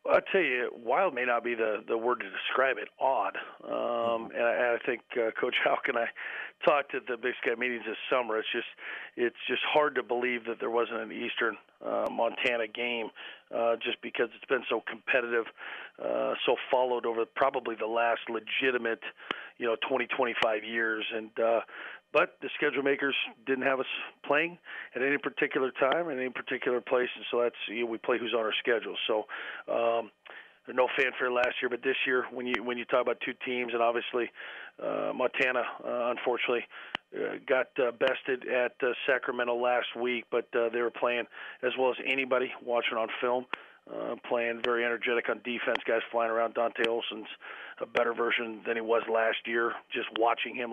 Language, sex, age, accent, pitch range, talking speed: English, male, 40-59, American, 115-125 Hz, 190 wpm